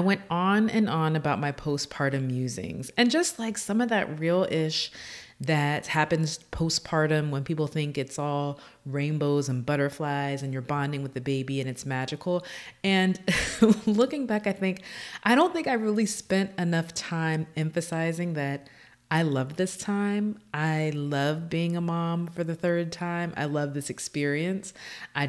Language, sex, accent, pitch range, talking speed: English, female, American, 135-185 Hz, 165 wpm